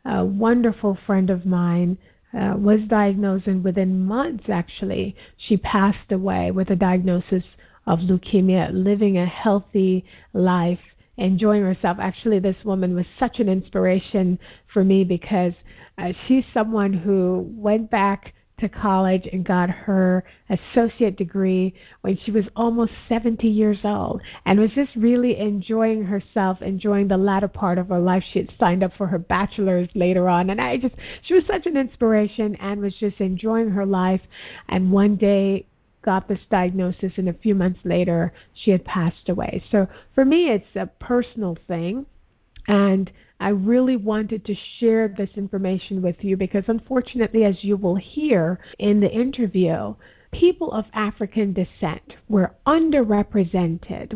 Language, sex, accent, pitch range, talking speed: English, female, American, 185-215 Hz, 155 wpm